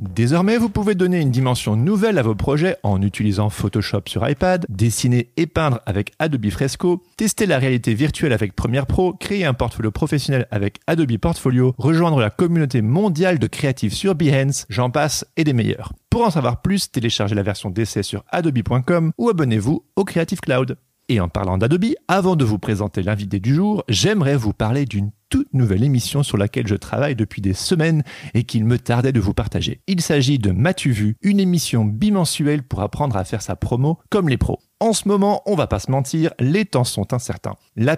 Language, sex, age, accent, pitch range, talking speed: French, male, 40-59, French, 110-160 Hz, 195 wpm